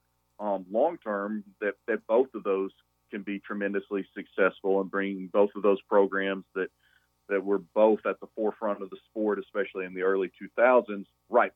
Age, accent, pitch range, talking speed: 40-59, American, 95-105 Hz, 175 wpm